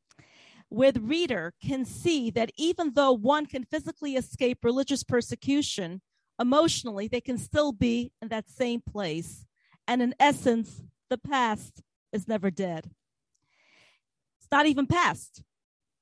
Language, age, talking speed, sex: English, 40-59, 130 wpm, female